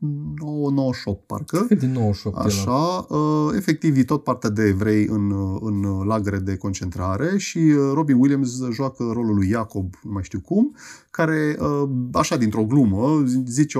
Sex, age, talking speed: male, 30-49, 130 wpm